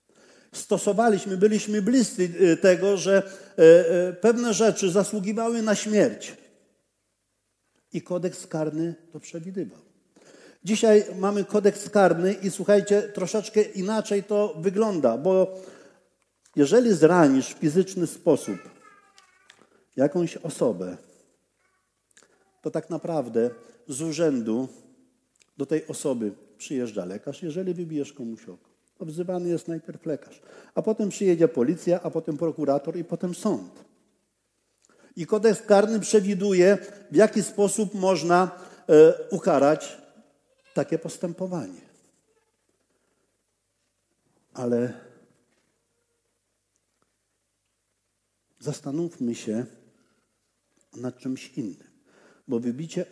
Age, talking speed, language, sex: 50-69, 95 wpm, Polish, male